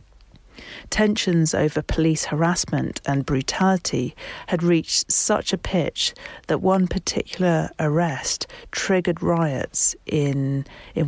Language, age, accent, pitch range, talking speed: English, 40-59, British, 140-175 Hz, 105 wpm